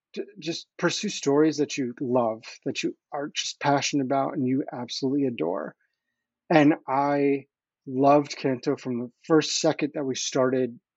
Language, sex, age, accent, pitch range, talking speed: English, male, 30-49, American, 130-155 Hz, 155 wpm